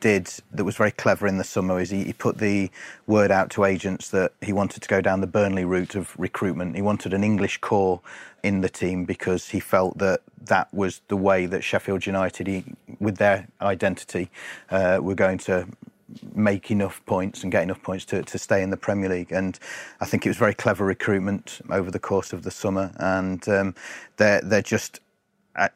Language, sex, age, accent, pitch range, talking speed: English, male, 30-49, British, 95-105 Hz, 205 wpm